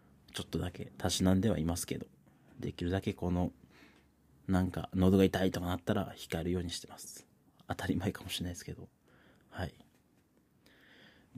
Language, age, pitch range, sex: Japanese, 30-49, 90-125 Hz, male